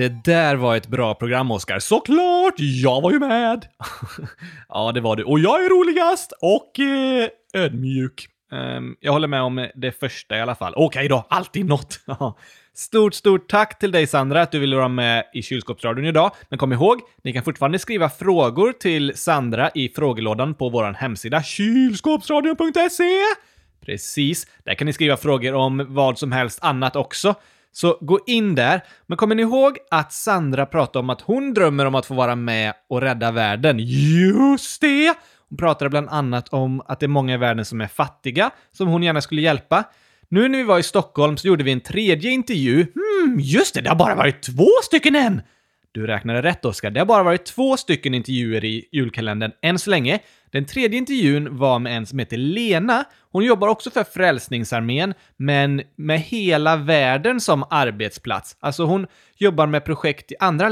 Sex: male